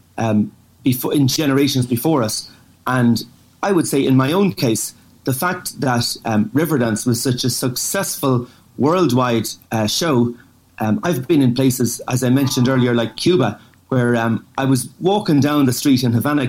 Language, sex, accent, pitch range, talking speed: English, male, Irish, 120-145 Hz, 165 wpm